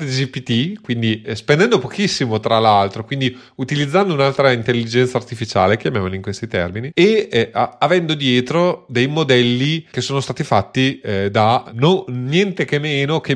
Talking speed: 155 wpm